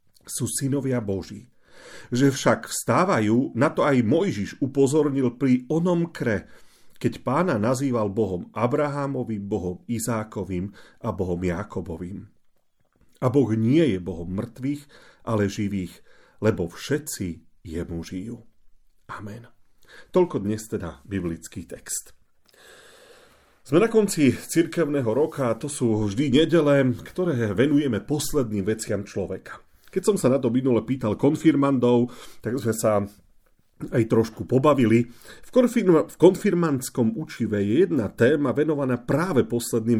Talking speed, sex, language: 120 wpm, male, Slovak